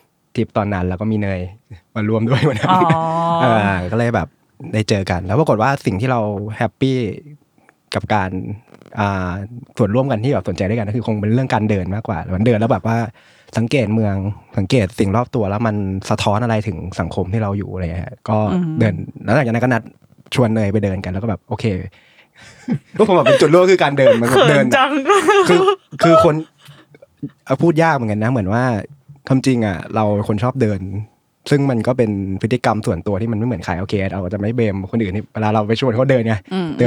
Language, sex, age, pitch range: Thai, male, 20-39, 105-130 Hz